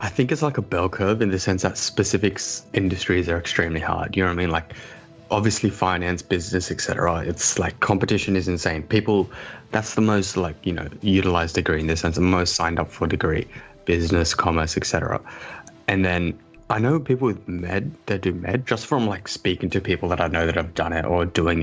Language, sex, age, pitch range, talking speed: English, male, 20-39, 85-105 Hz, 220 wpm